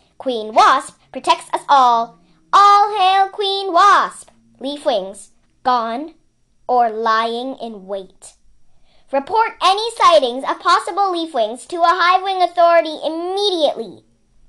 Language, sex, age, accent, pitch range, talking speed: English, male, 10-29, American, 210-340 Hz, 120 wpm